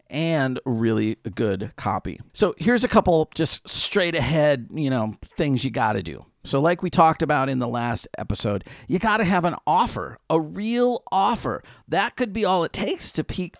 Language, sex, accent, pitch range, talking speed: English, male, American, 120-175 Hz, 190 wpm